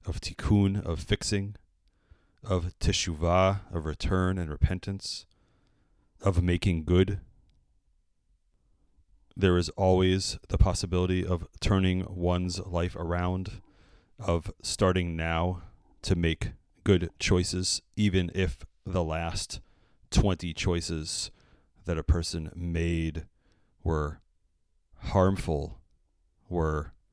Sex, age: male, 30-49